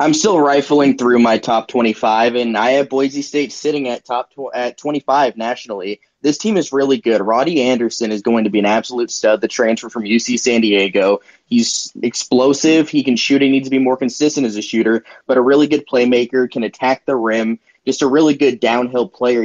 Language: English